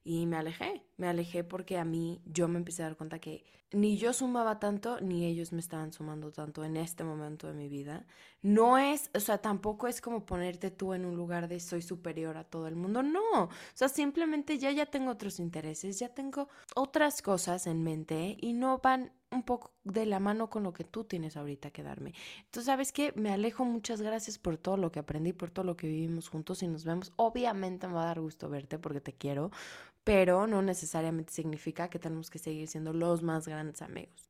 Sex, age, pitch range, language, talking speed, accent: female, 20-39, 165-215 Hz, Spanish, 220 wpm, Mexican